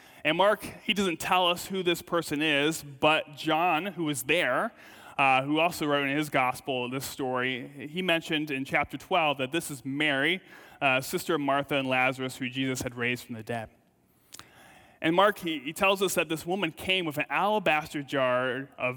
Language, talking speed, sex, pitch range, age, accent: English, 195 wpm, male, 135-170 Hz, 30-49, American